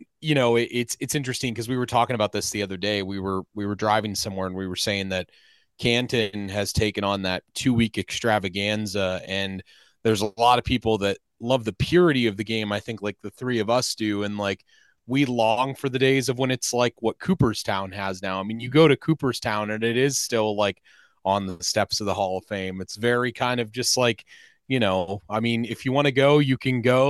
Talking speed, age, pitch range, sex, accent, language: 230 wpm, 30-49, 105-130 Hz, male, American, English